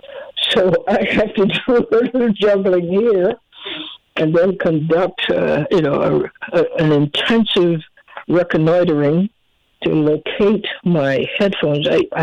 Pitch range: 160-230 Hz